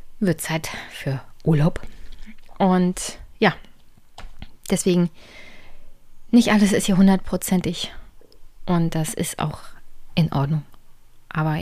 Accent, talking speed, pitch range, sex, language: German, 100 wpm, 175-220 Hz, female, German